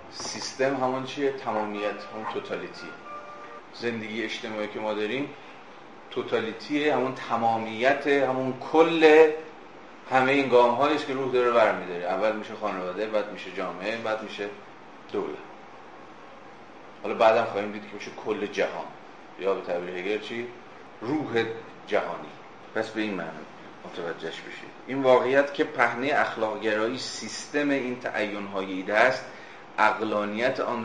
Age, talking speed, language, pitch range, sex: 30-49, 120 wpm, Persian, 100-130 Hz, male